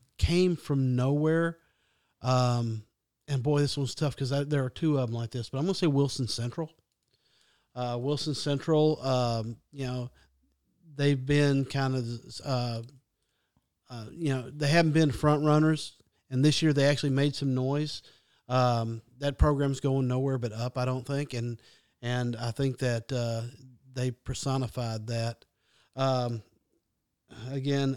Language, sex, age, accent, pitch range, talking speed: English, male, 40-59, American, 120-140 Hz, 150 wpm